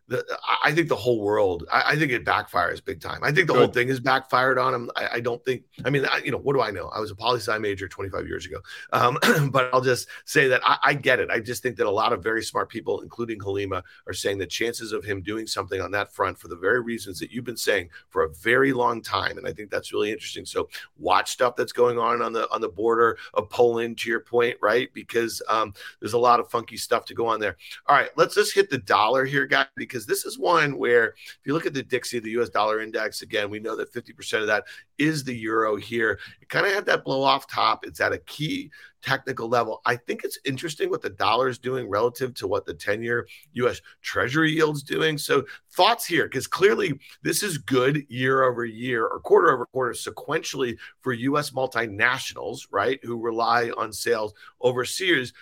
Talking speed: 230 wpm